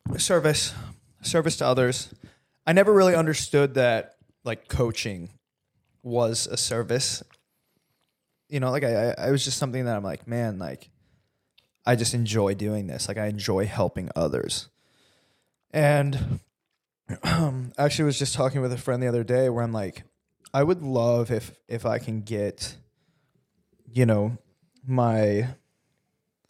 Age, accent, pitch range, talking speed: 20-39, American, 115-135 Hz, 145 wpm